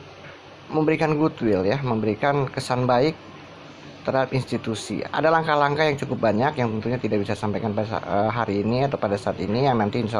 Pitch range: 110-145 Hz